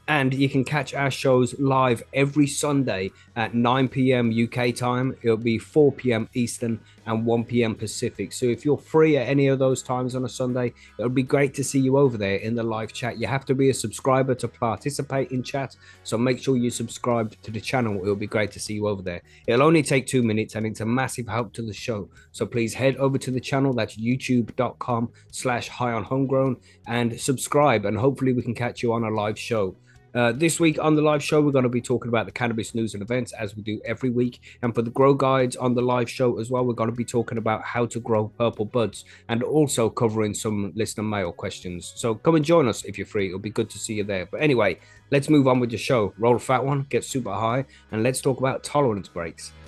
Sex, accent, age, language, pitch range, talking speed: male, British, 20-39, English, 110-130 Hz, 235 wpm